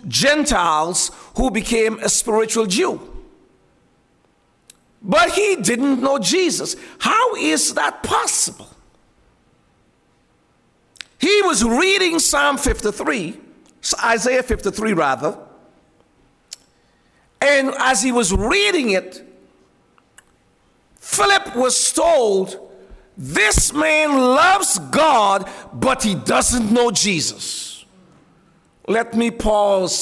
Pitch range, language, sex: 195-285 Hz, English, male